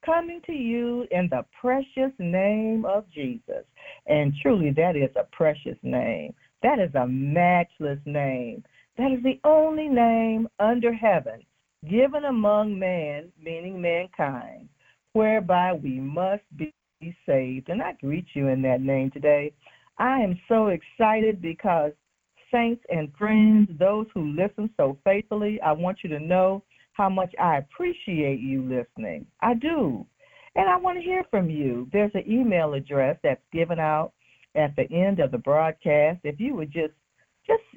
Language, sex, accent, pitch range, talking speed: English, female, American, 150-225 Hz, 155 wpm